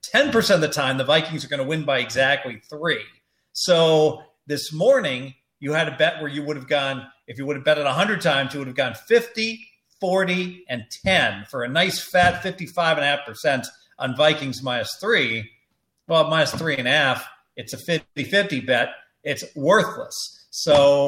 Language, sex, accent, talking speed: English, male, American, 175 wpm